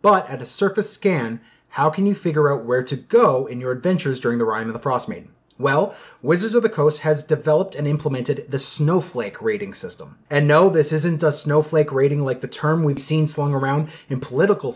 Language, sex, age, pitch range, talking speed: English, male, 30-49, 140-175 Hz, 205 wpm